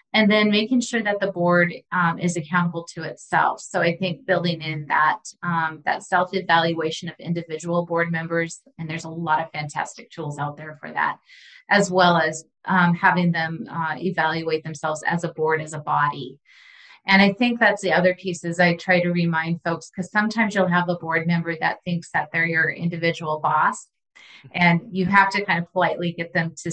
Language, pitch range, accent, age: English, 160-185 Hz, American, 30-49